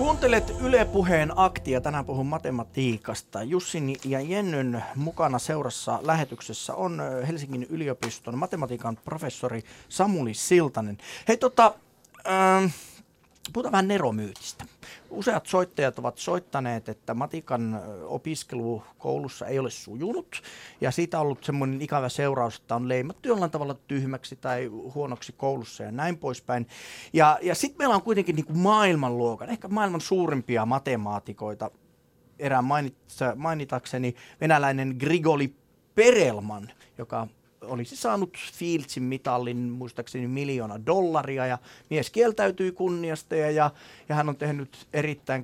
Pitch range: 125-165 Hz